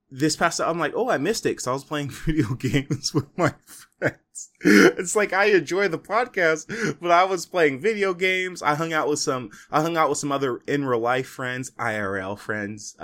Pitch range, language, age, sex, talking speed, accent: 110-165 Hz, English, 20-39, male, 220 wpm, American